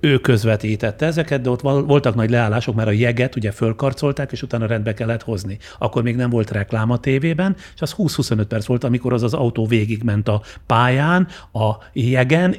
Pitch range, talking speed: 110-145 Hz, 185 wpm